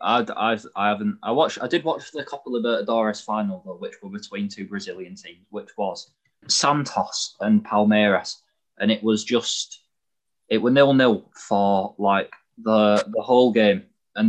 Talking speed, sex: 170 wpm, male